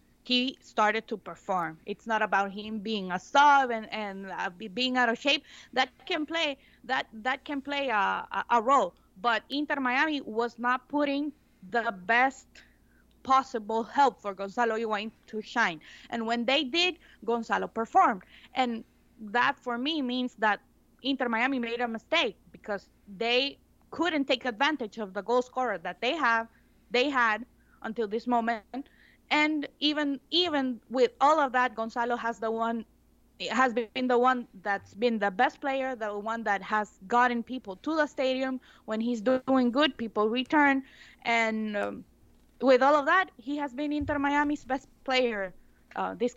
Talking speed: 165 wpm